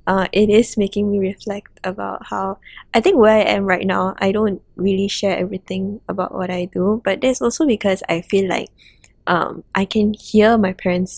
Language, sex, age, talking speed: English, female, 10-29, 200 wpm